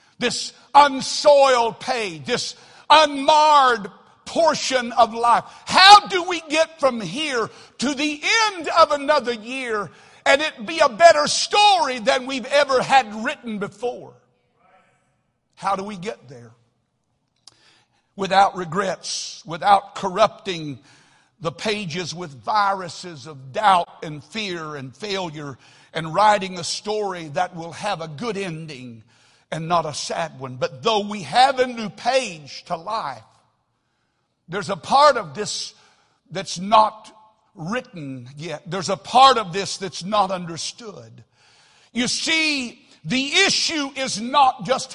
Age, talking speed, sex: 60-79, 130 wpm, male